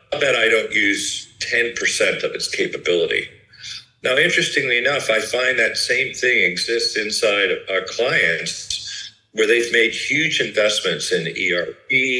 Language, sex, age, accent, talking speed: English, male, 50-69, American, 135 wpm